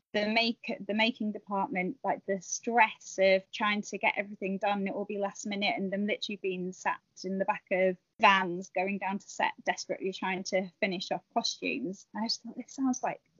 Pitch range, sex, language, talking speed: 195-225 Hz, female, English, 205 wpm